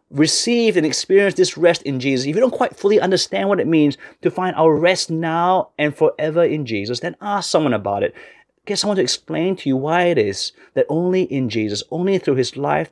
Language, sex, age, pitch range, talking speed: English, male, 30-49, 115-160 Hz, 220 wpm